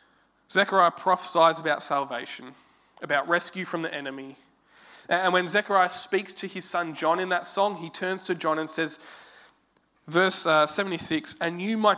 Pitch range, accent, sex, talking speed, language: 160-200 Hz, Australian, male, 155 wpm, English